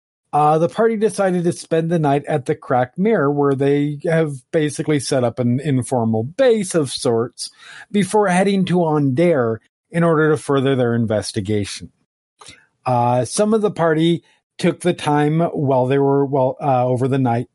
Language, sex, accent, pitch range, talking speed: English, male, American, 130-180 Hz, 170 wpm